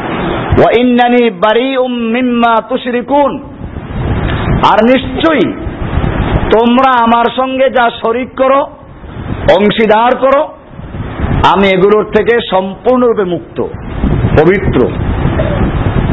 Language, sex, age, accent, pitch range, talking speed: Bengali, male, 50-69, native, 195-240 Hz, 55 wpm